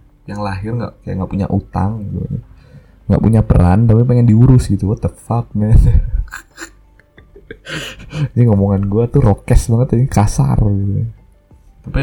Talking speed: 140 wpm